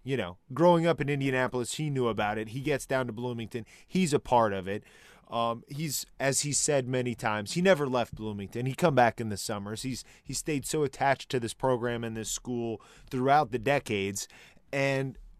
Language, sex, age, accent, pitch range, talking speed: English, male, 20-39, American, 110-135 Hz, 205 wpm